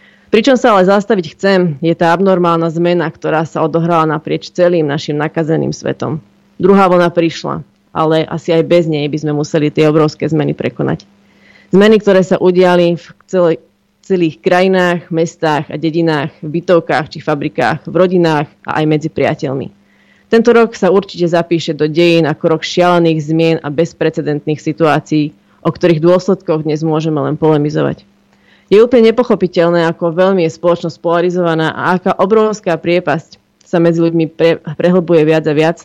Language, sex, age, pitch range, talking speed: Slovak, female, 30-49, 160-180 Hz, 155 wpm